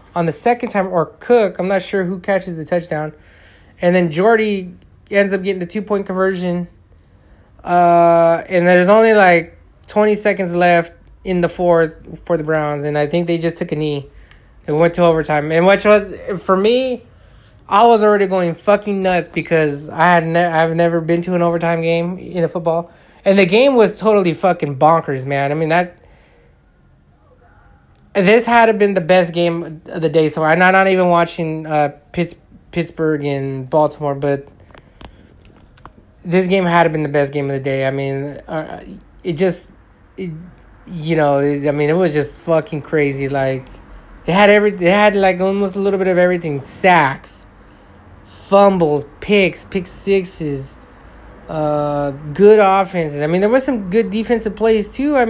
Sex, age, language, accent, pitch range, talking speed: male, 20-39, English, American, 150-195 Hz, 180 wpm